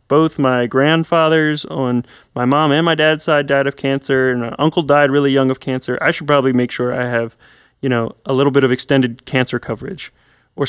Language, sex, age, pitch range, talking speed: English, male, 20-39, 125-155 Hz, 215 wpm